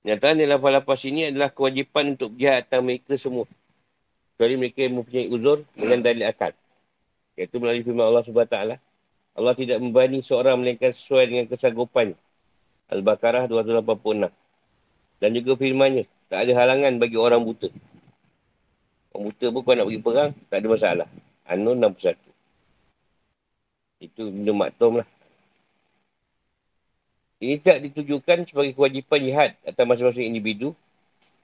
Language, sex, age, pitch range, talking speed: Malay, male, 50-69, 120-140 Hz, 130 wpm